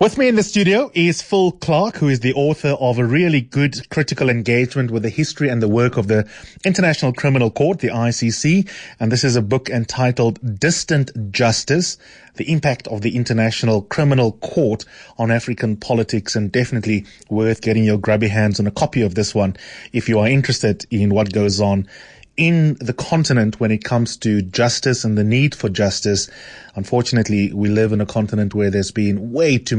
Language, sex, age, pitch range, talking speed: English, male, 30-49, 105-130 Hz, 190 wpm